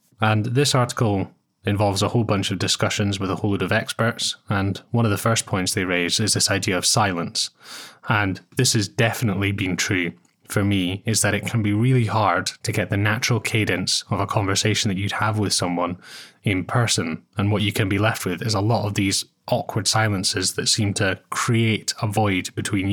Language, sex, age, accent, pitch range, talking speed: English, male, 20-39, British, 95-110 Hz, 205 wpm